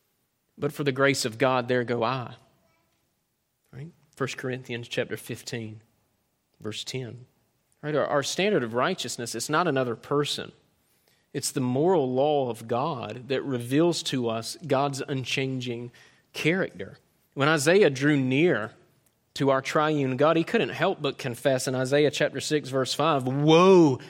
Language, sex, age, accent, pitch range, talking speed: English, male, 30-49, American, 130-170 Hz, 145 wpm